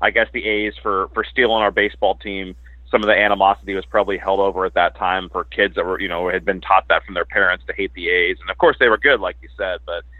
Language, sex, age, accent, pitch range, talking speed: English, male, 30-49, American, 85-115 Hz, 280 wpm